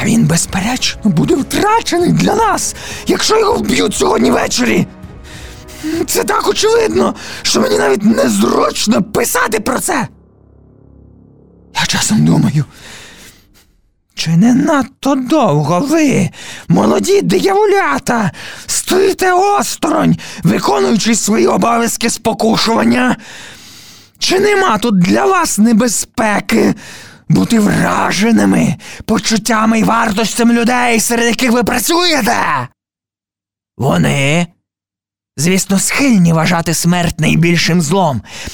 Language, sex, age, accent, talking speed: Ukrainian, male, 20-39, native, 95 wpm